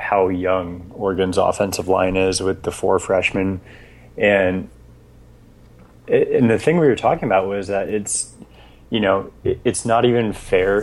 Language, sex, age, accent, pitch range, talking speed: English, male, 30-49, American, 95-120 Hz, 150 wpm